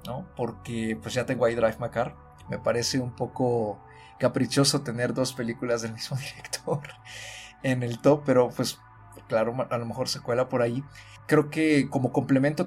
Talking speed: 170 wpm